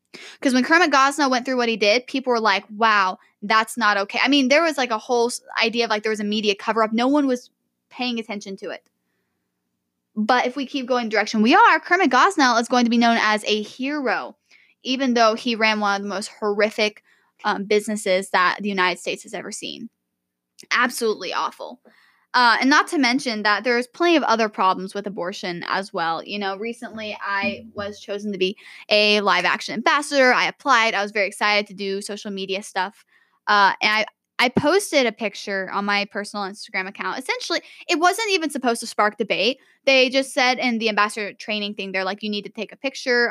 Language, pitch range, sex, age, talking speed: English, 200-255 Hz, female, 10-29, 210 wpm